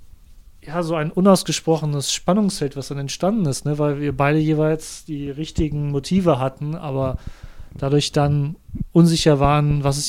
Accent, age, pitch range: German, 30-49, 135-160 Hz